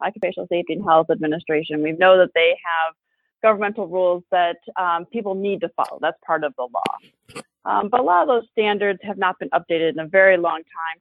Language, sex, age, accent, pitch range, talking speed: English, female, 30-49, American, 160-205 Hz, 215 wpm